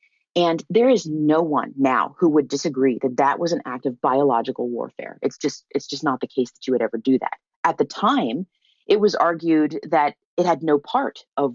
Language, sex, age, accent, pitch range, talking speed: English, female, 30-49, American, 135-175 Hz, 215 wpm